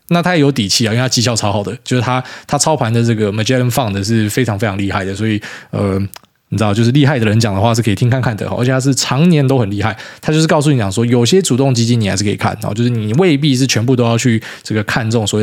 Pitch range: 110-145 Hz